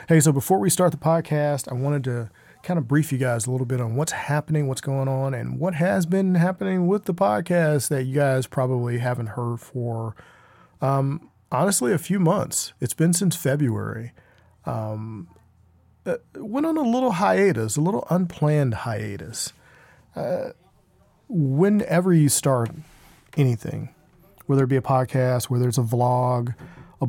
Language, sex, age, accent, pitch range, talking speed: English, male, 40-59, American, 120-150 Hz, 160 wpm